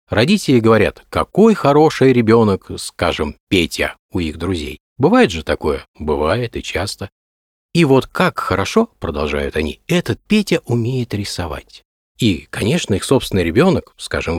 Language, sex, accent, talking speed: Russian, male, native, 135 wpm